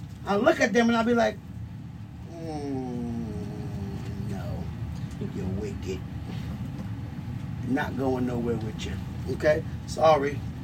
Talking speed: 105 wpm